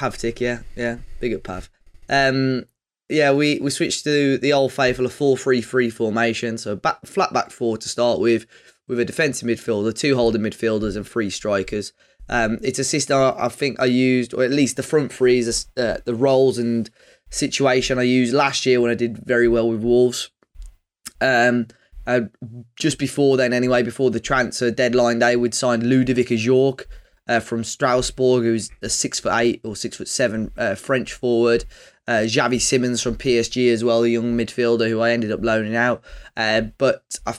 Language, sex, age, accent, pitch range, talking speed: English, male, 20-39, British, 115-130 Hz, 195 wpm